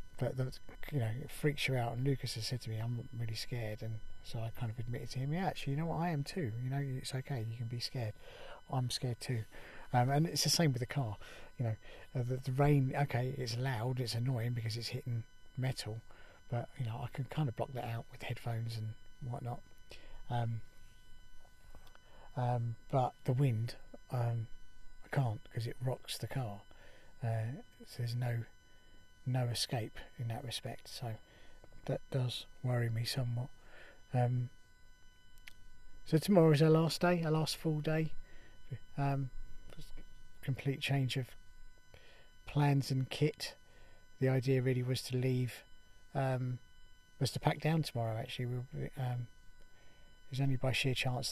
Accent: British